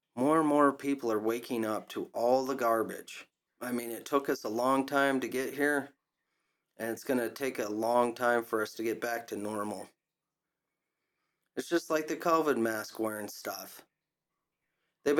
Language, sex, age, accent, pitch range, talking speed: English, male, 30-49, American, 115-140 Hz, 180 wpm